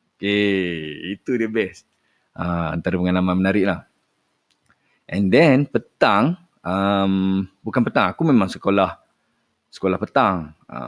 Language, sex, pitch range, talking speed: Malay, male, 90-120 Hz, 110 wpm